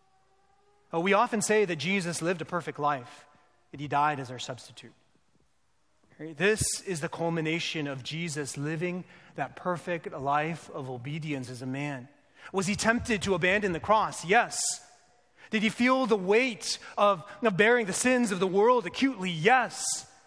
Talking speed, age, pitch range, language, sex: 165 wpm, 30-49, 175-250 Hz, English, male